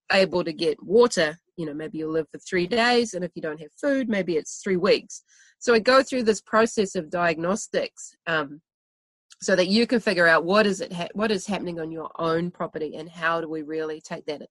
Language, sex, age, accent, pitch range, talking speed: English, female, 30-49, Australian, 165-215 Hz, 225 wpm